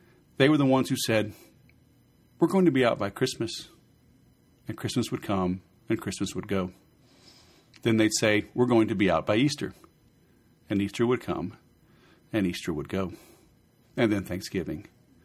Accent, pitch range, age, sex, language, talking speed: American, 100-125 Hz, 40-59, male, English, 165 wpm